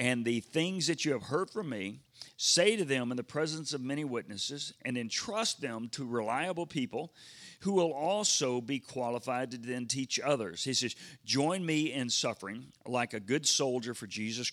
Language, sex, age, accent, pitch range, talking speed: English, male, 40-59, American, 115-150 Hz, 185 wpm